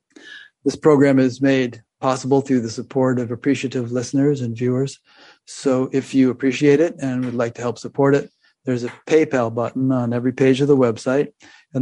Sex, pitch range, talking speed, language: male, 125-140 Hz, 185 wpm, English